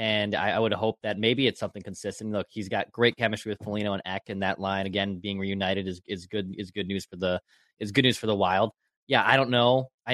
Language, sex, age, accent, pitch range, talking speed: English, male, 20-39, American, 100-125 Hz, 260 wpm